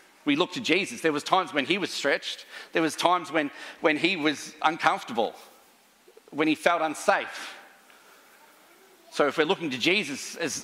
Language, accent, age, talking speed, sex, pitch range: English, Australian, 40-59, 170 wpm, male, 135-190 Hz